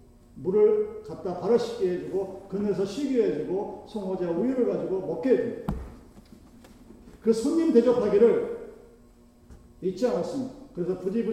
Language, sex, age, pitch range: Korean, male, 40-59, 155-250 Hz